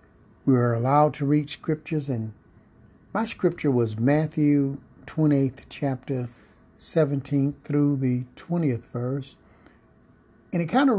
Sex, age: male, 60-79